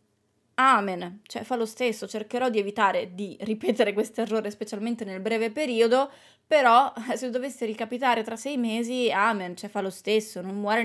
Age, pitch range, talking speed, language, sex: 20-39, 200-240 Hz, 165 wpm, Italian, female